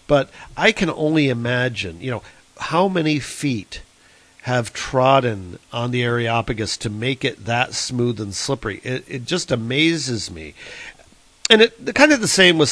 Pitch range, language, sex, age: 115-140 Hz, English, male, 50-69